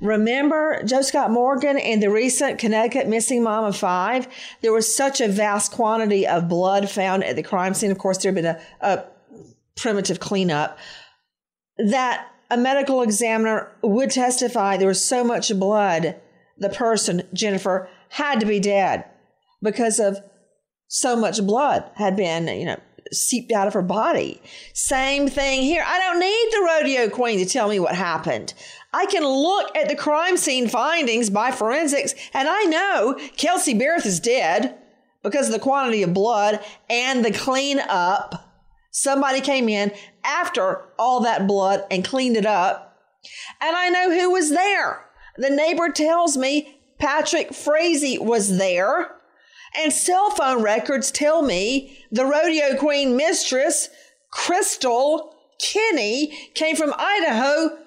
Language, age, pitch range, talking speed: English, 40-59, 210-295 Hz, 150 wpm